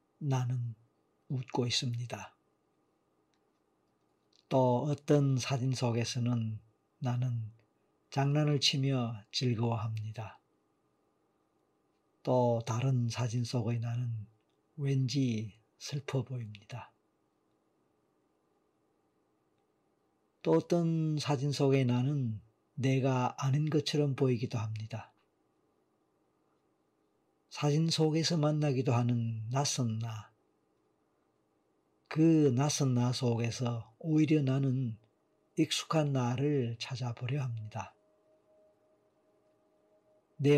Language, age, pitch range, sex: Korean, 50-69, 110-140 Hz, male